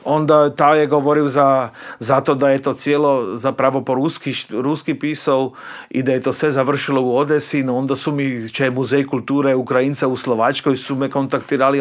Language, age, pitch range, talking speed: Croatian, 40-59, 135-165 Hz, 190 wpm